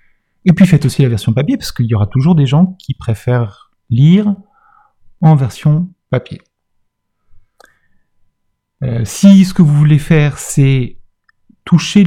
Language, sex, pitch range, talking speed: French, male, 120-165 Hz, 145 wpm